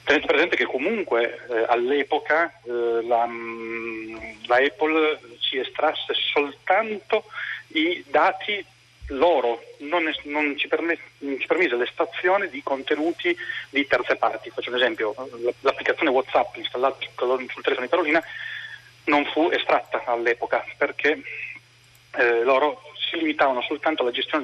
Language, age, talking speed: Italian, 40-59, 130 wpm